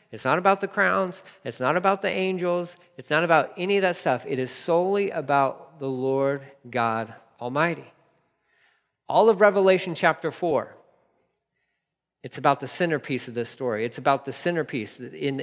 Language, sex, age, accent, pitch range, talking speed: English, male, 40-59, American, 130-175 Hz, 165 wpm